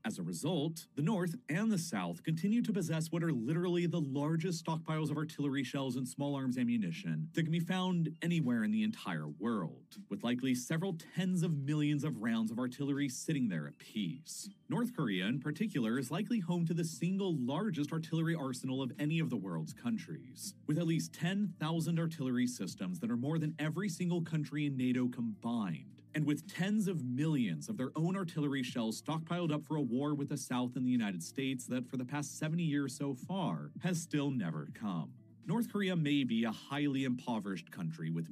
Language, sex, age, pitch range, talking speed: English, male, 40-59, 130-175 Hz, 195 wpm